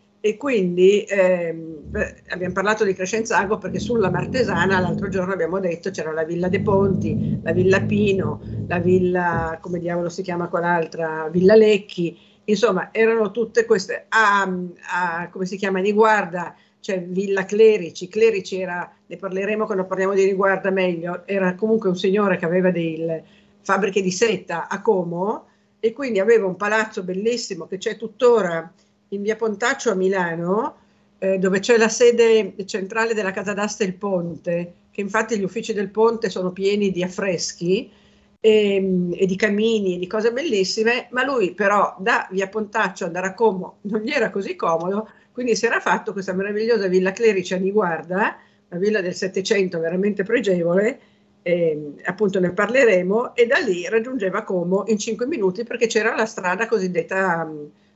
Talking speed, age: 160 wpm, 50-69